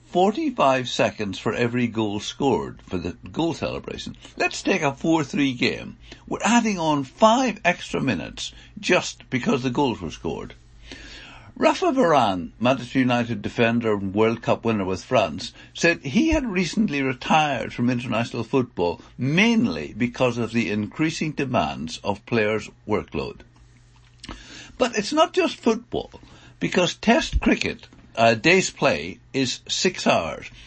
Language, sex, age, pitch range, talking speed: English, male, 60-79, 115-175 Hz, 135 wpm